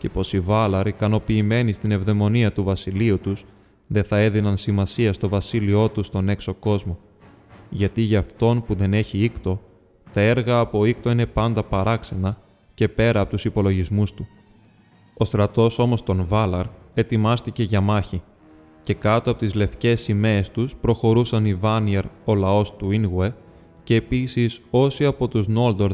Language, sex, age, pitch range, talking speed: Greek, male, 20-39, 100-115 Hz, 155 wpm